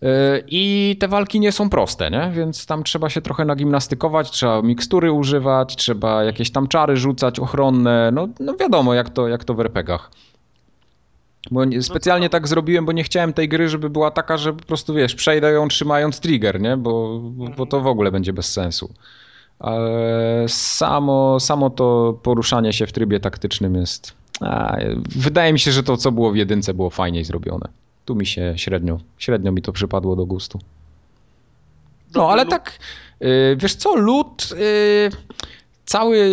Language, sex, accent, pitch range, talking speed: Polish, male, native, 115-155 Hz, 165 wpm